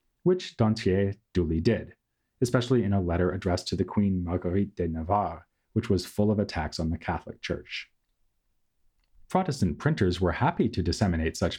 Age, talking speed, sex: 30-49, 160 wpm, male